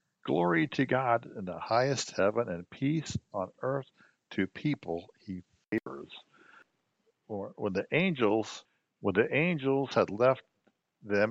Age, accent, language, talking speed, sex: 60-79, American, English, 135 wpm, male